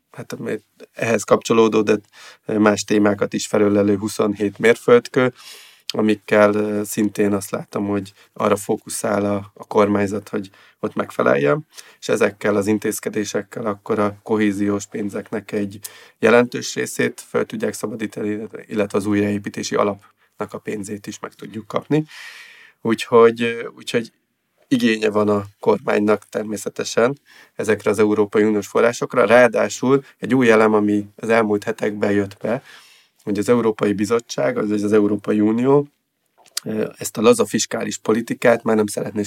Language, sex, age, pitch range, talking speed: Hungarian, male, 30-49, 105-110 Hz, 125 wpm